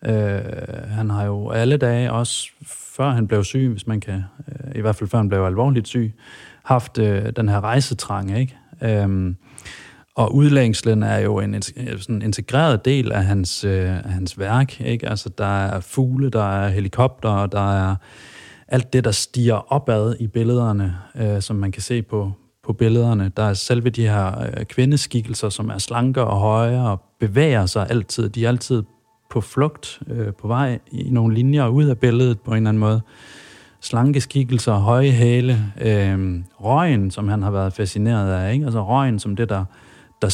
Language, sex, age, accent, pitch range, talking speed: Danish, male, 30-49, native, 105-130 Hz, 185 wpm